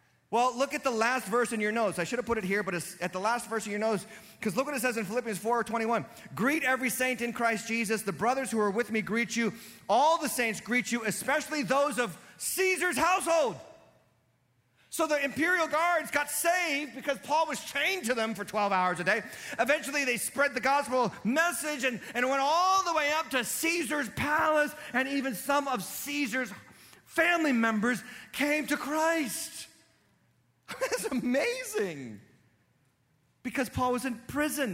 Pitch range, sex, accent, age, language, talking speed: 165-275 Hz, male, American, 40-59, English, 185 wpm